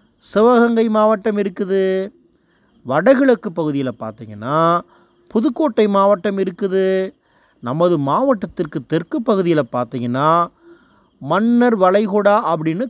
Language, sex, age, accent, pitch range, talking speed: English, male, 30-49, Indian, 160-235 Hz, 80 wpm